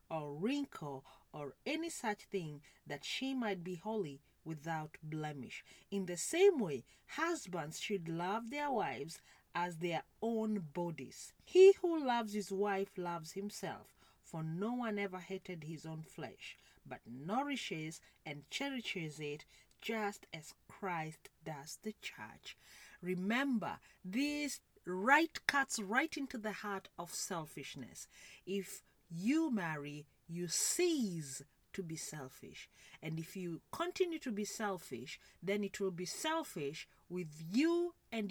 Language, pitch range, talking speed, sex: English, 160-240 Hz, 135 wpm, female